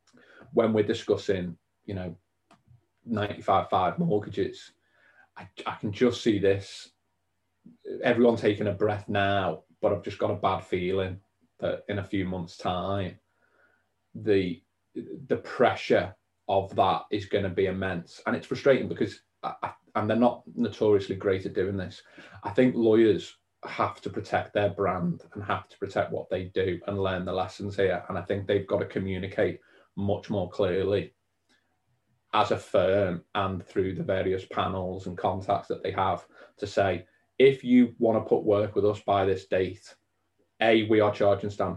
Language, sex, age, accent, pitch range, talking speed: English, male, 30-49, British, 95-105 Hz, 165 wpm